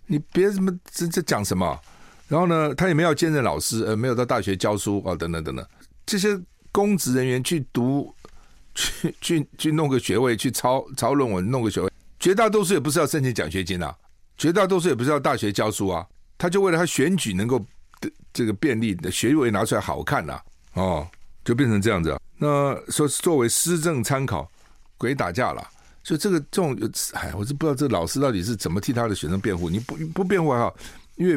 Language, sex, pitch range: Chinese, male, 95-150 Hz